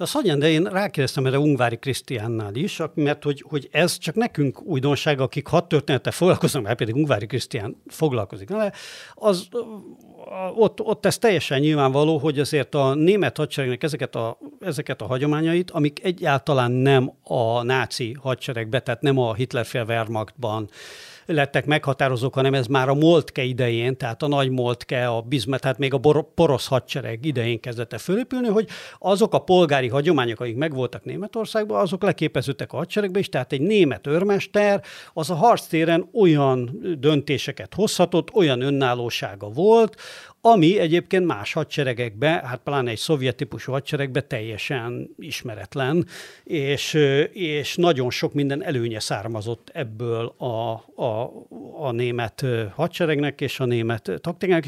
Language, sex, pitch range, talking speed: Hungarian, male, 125-165 Hz, 140 wpm